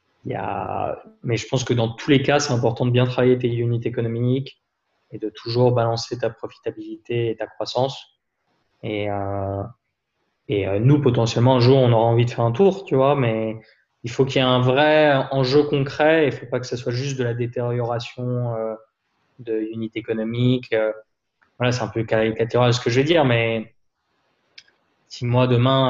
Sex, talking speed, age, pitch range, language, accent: male, 195 wpm, 20-39, 110-130 Hz, French, French